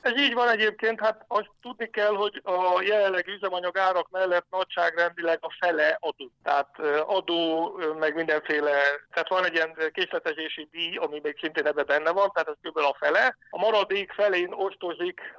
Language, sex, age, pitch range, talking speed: Hungarian, male, 60-79, 155-195 Hz, 170 wpm